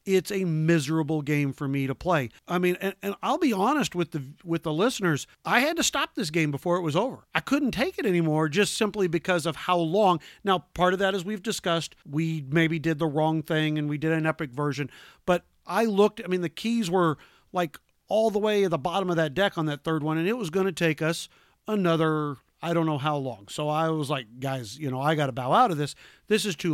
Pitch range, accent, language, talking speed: 150-195 Hz, American, English, 250 wpm